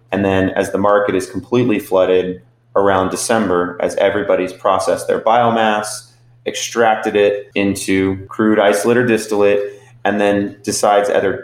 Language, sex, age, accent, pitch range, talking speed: English, male, 30-49, American, 100-120 Hz, 135 wpm